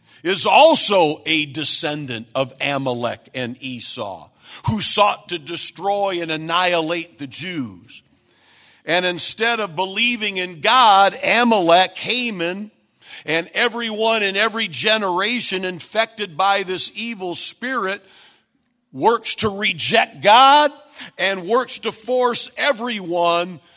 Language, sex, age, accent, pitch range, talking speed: English, male, 50-69, American, 165-235 Hz, 110 wpm